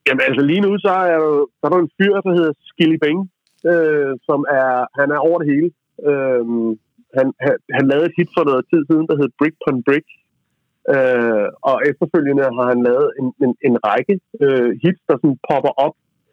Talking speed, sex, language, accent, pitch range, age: 200 wpm, male, Danish, native, 130-180 Hz, 30-49